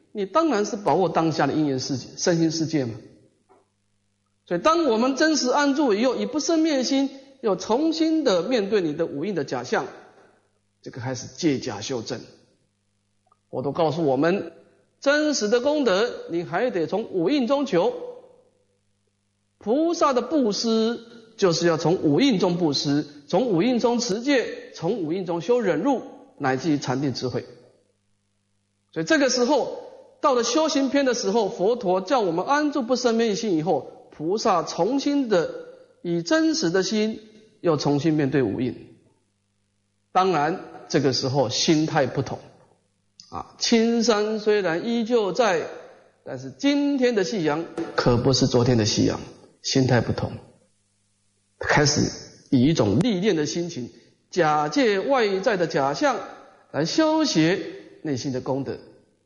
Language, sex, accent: English, male, Chinese